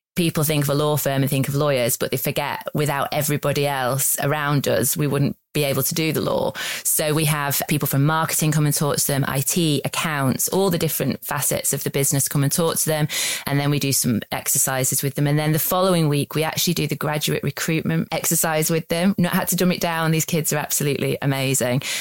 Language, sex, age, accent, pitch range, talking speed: English, female, 20-39, British, 140-165 Hz, 230 wpm